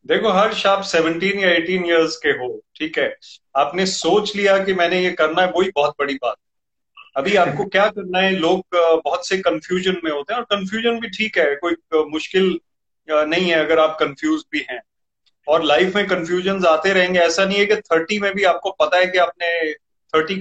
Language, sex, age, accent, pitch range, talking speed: Hindi, male, 30-49, native, 160-205 Hz, 200 wpm